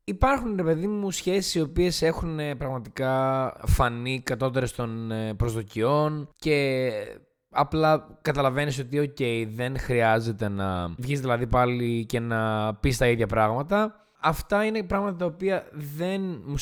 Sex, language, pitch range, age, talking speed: male, Greek, 115-160 Hz, 20-39, 135 wpm